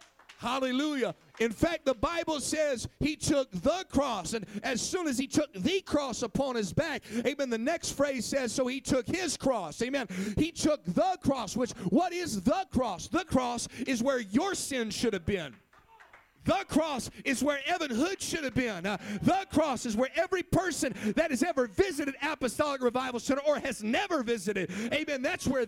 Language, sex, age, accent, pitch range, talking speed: English, male, 50-69, American, 245-325 Hz, 185 wpm